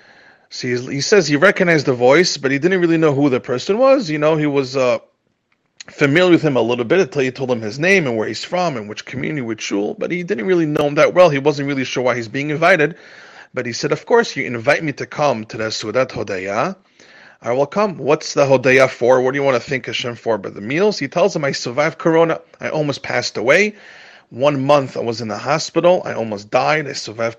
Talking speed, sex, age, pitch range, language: 250 wpm, male, 30-49, 125-165 Hz, English